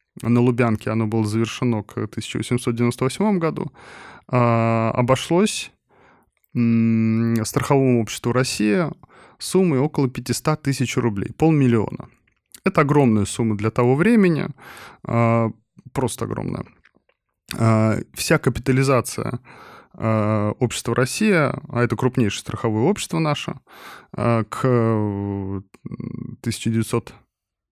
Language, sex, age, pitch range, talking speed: Russian, male, 20-39, 115-140 Hz, 80 wpm